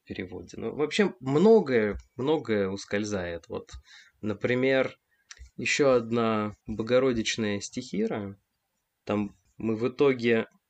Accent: native